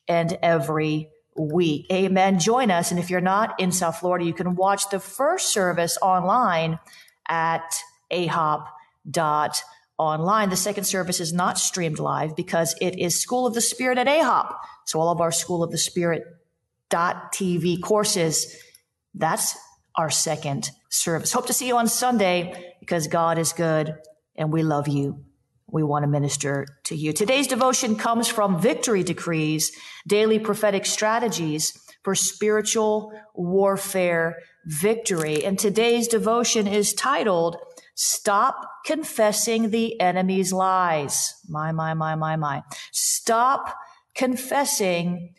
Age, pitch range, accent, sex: 40-59, 165-220 Hz, American, female